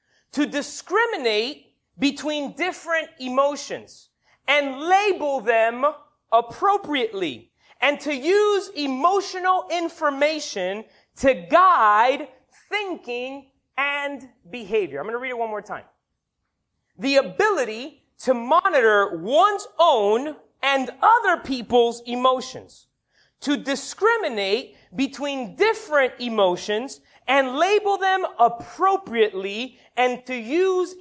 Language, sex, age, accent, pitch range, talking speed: English, male, 30-49, American, 235-330 Hz, 95 wpm